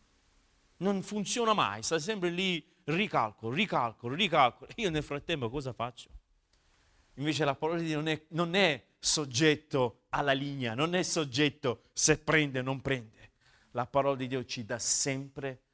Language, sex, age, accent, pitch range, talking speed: Italian, male, 40-59, native, 130-190 Hz, 155 wpm